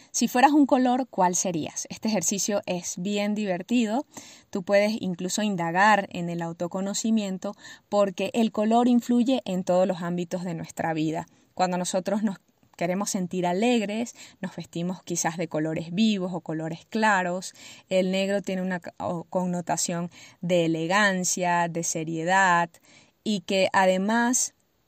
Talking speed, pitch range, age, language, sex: 135 wpm, 180-220 Hz, 20-39, Spanish, female